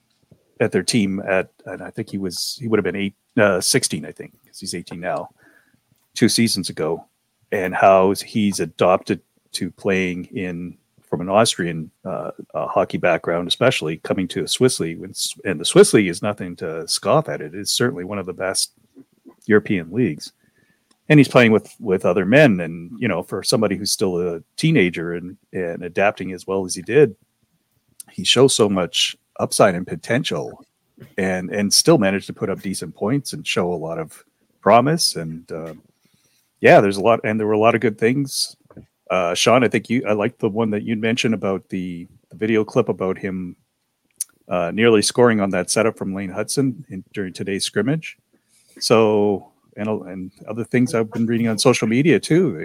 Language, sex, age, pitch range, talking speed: English, male, 40-59, 95-115 Hz, 185 wpm